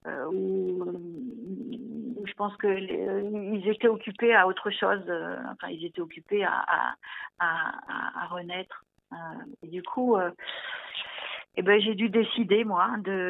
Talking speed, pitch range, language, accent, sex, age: 150 wpm, 190-235 Hz, French, French, female, 50-69